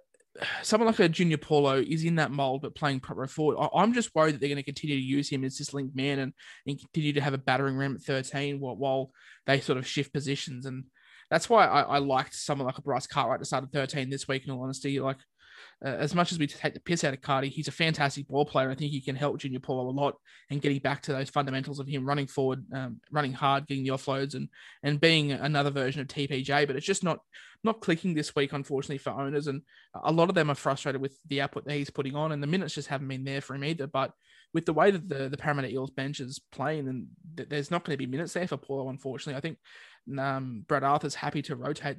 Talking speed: 260 wpm